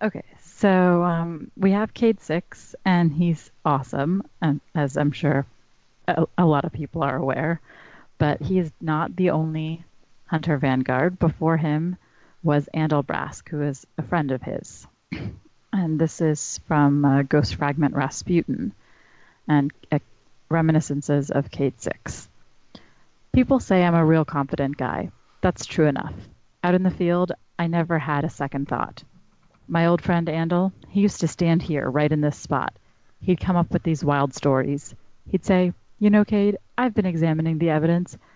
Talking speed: 160 wpm